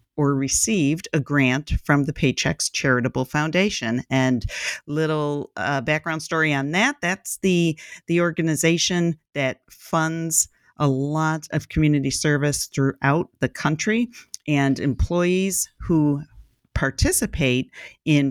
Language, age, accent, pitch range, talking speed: English, 50-69, American, 125-160 Hz, 115 wpm